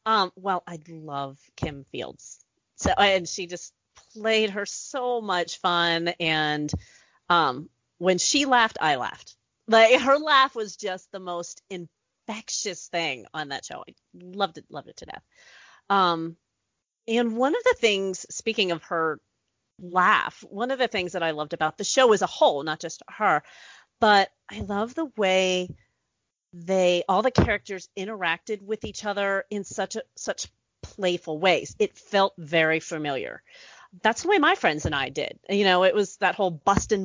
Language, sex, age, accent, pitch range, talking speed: English, female, 30-49, American, 170-225 Hz, 170 wpm